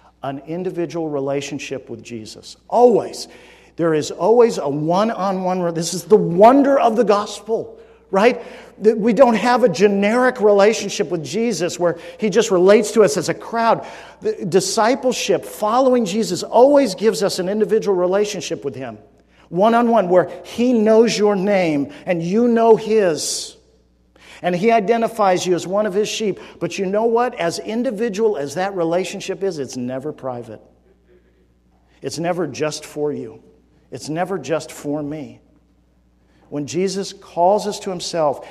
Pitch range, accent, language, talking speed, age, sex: 140-210 Hz, American, English, 150 wpm, 50-69, male